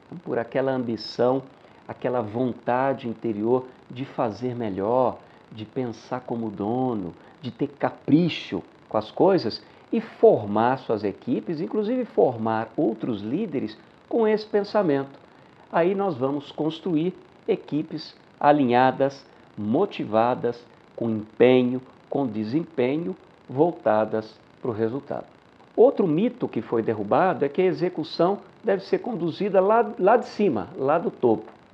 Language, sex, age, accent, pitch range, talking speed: Portuguese, male, 60-79, Brazilian, 110-150 Hz, 120 wpm